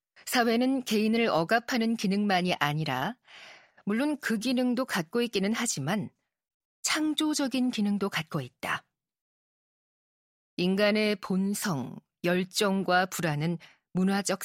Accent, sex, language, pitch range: native, female, Korean, 185-235 Hz